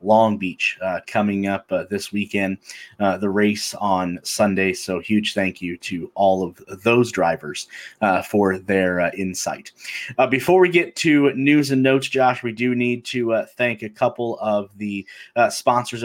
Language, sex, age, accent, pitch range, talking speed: English, male, 30-49, American, 105-130 Hz, 180 wpm